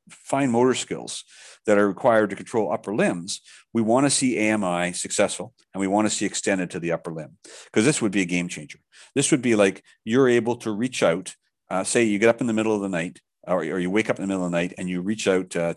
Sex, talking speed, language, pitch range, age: male, 265 wpm, English, 90-115 Hz, 50-69